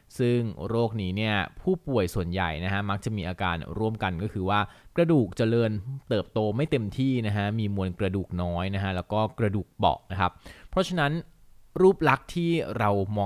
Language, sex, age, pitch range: Thai, male, 20-39, 95-125 Hz